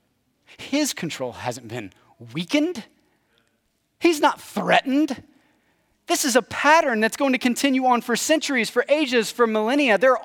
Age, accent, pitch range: 30-49, American, 130-205 Hz